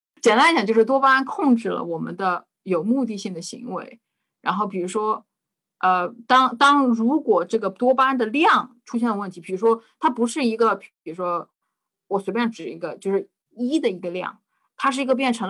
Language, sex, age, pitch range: Chinese, female, 20-39, 195-275 Hz